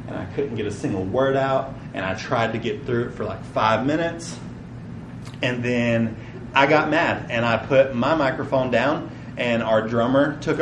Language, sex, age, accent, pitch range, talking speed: English, male, 30-49, American, 105-130 Hz, 190 wpm